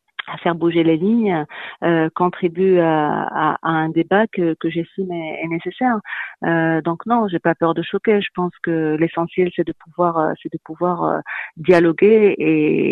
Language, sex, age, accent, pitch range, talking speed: French, female, 40-59, French, 160-195 Hz, 175 wpm